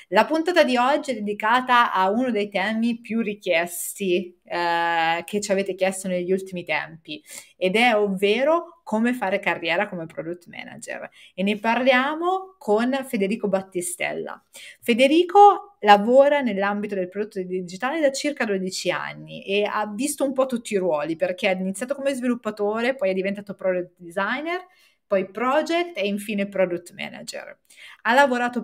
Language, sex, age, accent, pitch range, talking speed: Italian, female, 30-49, native, 185-255 Hz, 150 wpm